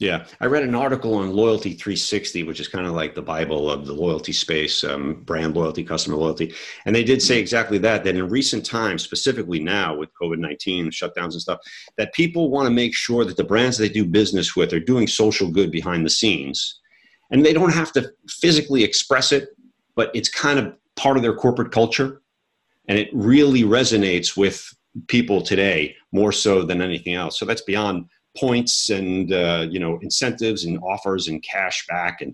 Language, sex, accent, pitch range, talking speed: English, male, American, 90-120 Hz, 195 wpm